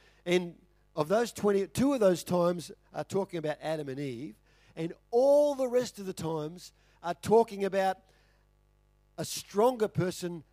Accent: Australian